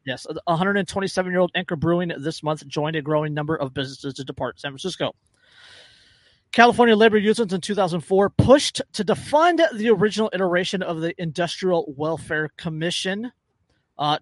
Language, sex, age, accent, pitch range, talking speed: English, male, 30-49, American, 150-190 Hz, 140 wpm